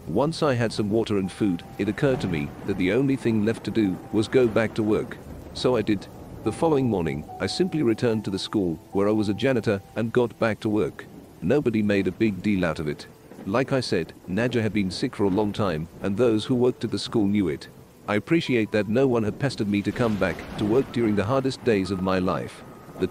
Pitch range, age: 100-125 Hz, 40-59